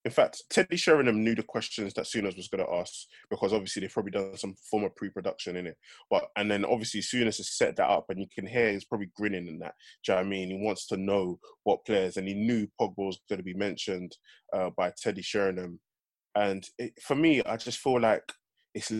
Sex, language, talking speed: male, English, 240 wpm